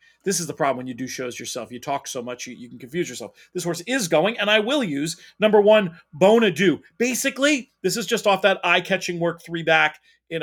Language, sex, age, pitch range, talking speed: English, male, 40-59, 135-175 Hz, 230 wpm